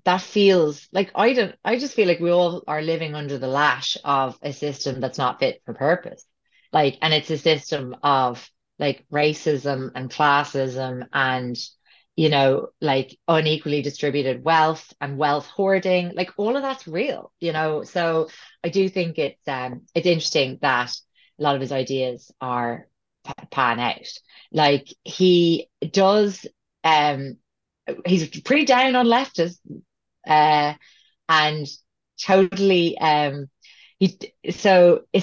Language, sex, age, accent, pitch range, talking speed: English, female, 30-49, Irish, 140-180 Hz, 145 wpm